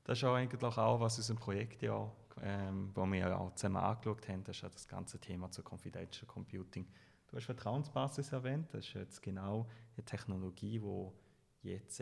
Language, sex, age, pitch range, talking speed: German, male, 30-49, 100-125 Hz, 195 wpm